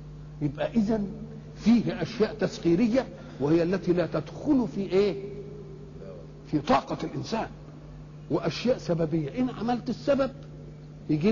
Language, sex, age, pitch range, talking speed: Arabic, male, 50-69, 150-220 Hz, 105 wpm